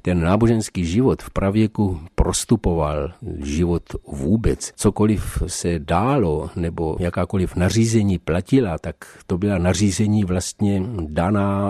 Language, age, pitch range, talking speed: Czech, 50-69, 90-110 Hz, 110 wpm